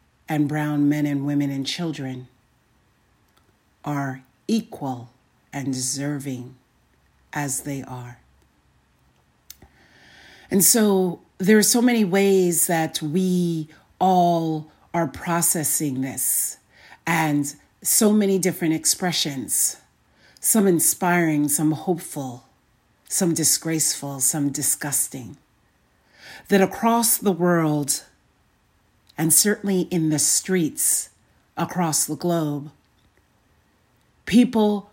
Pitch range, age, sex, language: 110-175 Hz, 40-59, female, English